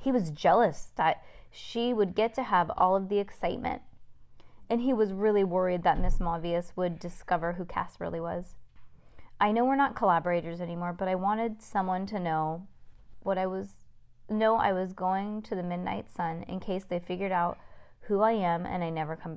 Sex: female